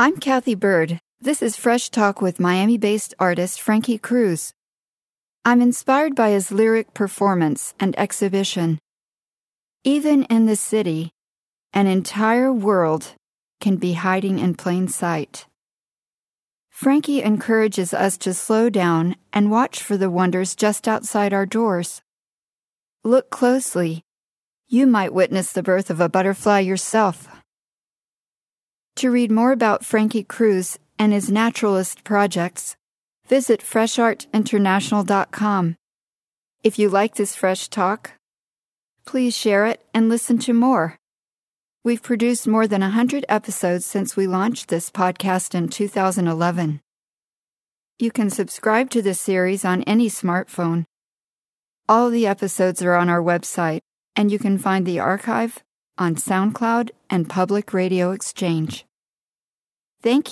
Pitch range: 185-230 Hz